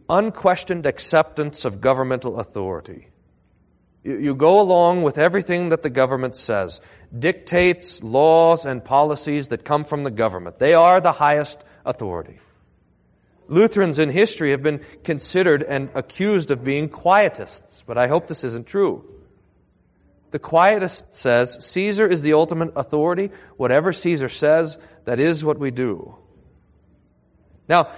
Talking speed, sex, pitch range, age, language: 135 wpm, male, 125-185 Hz, 40-59, English